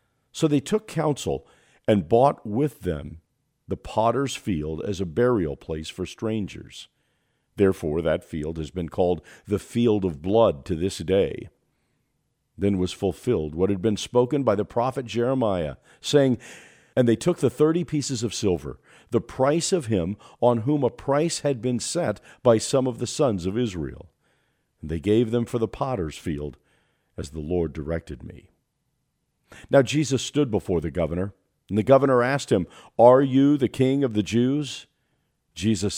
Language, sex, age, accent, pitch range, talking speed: English, male, 50-69, American, 95-140 Hz, 165 wpm